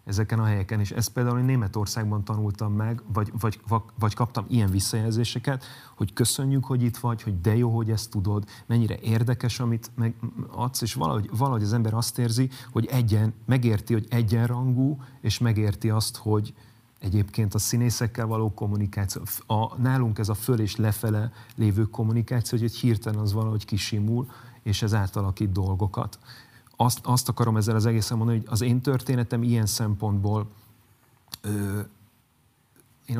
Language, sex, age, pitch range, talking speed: Hungarian, male, 30-49, 105-120 Hz, 155 wpm